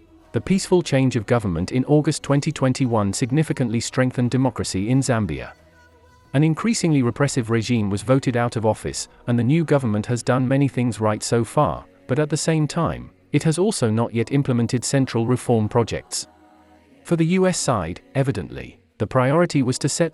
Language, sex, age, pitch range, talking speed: German, male, 40-59, 110-145 Hz, 170 wpm